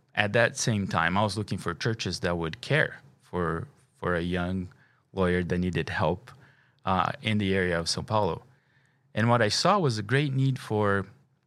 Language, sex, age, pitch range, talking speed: English, male, 30-49, 95-135 Hz, 190 wpm